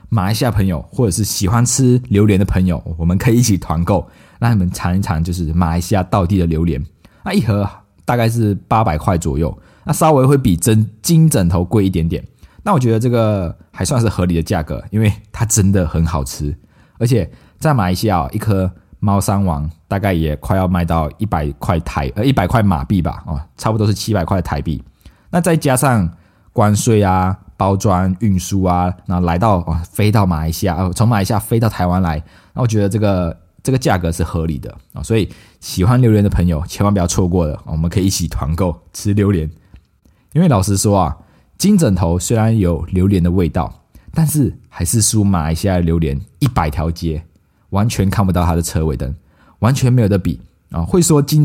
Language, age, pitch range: Chinese, 20-39, 85-110 Hz